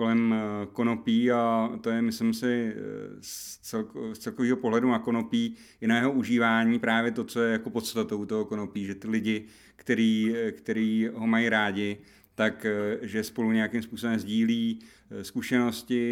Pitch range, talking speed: 105-120 Hz, 155 wpm